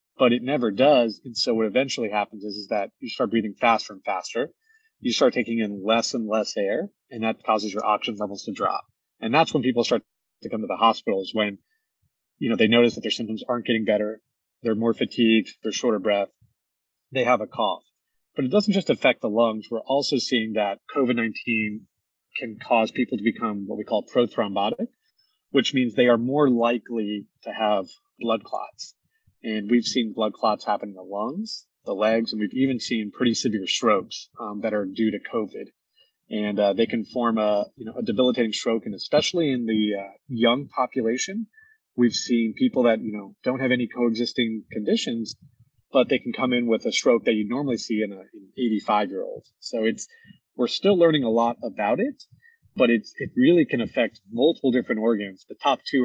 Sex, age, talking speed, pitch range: male, 30-49, 200 wpm, 110-130 Hz